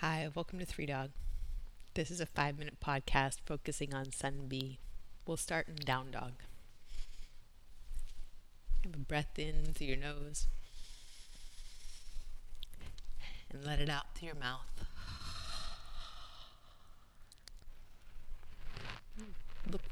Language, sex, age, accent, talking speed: English, female, 30-49, American, 100 wpm